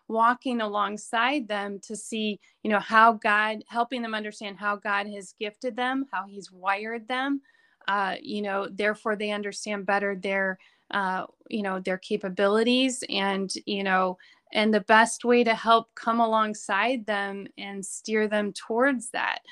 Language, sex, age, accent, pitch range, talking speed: English, female, 30-49, American, 205-245 Hz, 155 wpm